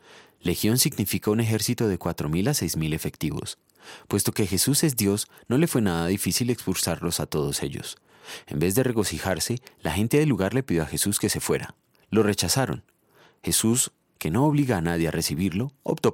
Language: Spanish